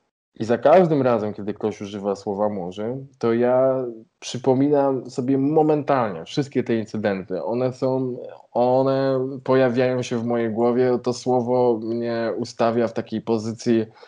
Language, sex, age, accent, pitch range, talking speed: Polish, male, 20-39, native, 115-125 Hz, 135 wpm